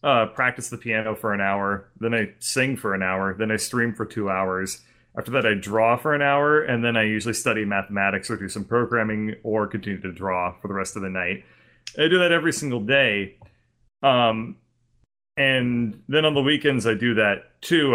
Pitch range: 105-135 Hz